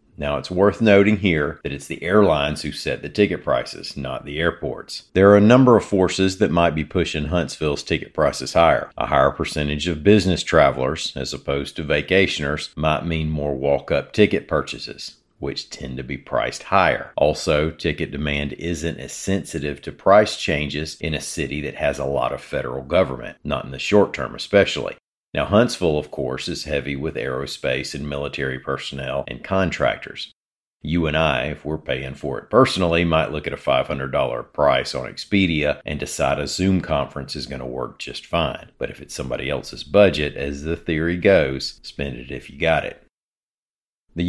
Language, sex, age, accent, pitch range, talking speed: English, male, 50-69, American, 70-90 Hz, 185 wpm